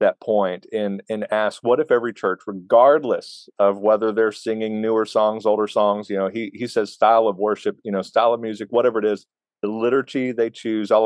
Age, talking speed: 40-59, 210 wpm